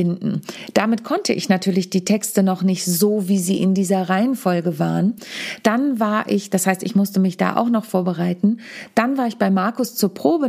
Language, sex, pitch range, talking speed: German, female, 185-220 Hz, 195 wpm